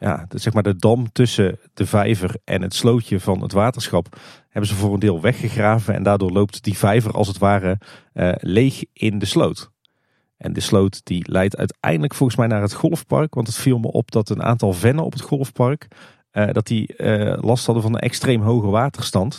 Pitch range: 95-125 Hz